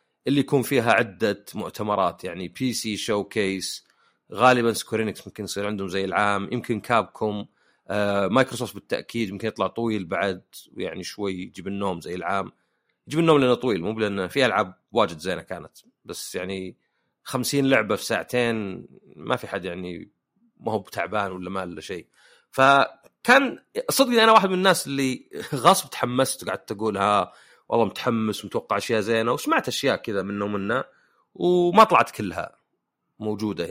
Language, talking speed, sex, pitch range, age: Arabic, 150 wpm, male, 100-130 Hz, 30-49